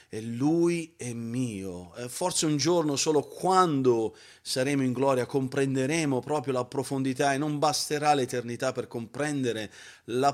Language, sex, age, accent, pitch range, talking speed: Italian, male, 40-59, native, 115-145 Hz, 135 wpm